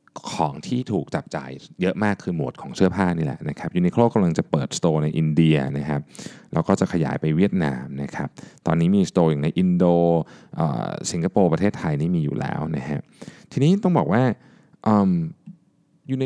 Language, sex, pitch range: Thai, male, 80-115 Hz